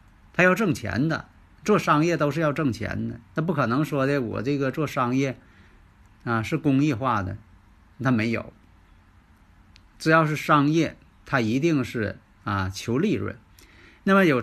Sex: male